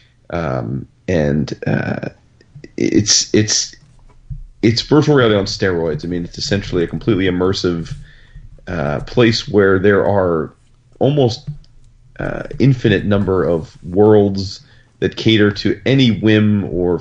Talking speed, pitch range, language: 120 wpm, 95-120 Hz, English